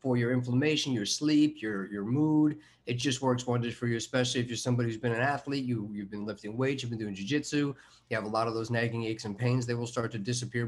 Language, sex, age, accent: English, male, 30-49, American